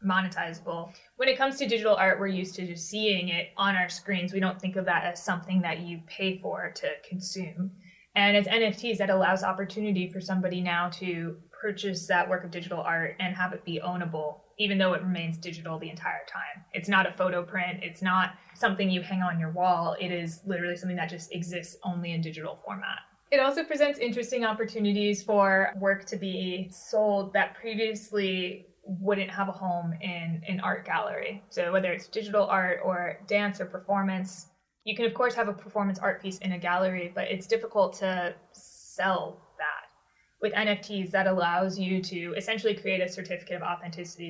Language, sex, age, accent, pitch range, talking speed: English, female, 20-39, American, 175-200 Hz, 190 wpm